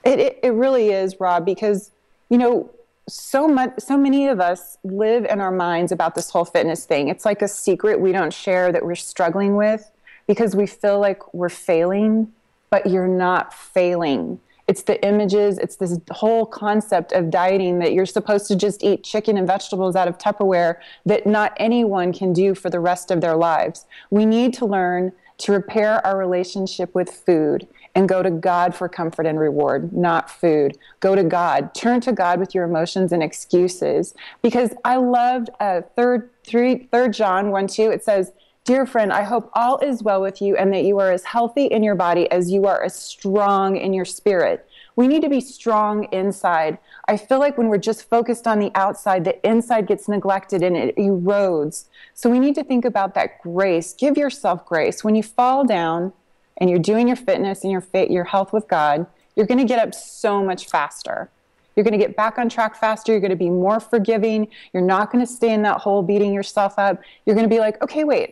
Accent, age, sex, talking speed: American, 30-49, female, 205 wpm